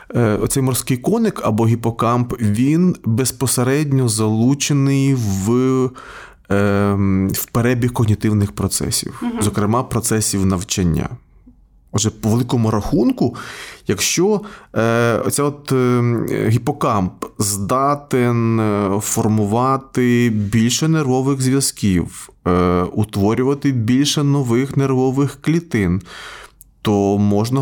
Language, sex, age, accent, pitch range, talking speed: Ukrainian, male, 20-39, native, 105-140 Hz, 75 wpm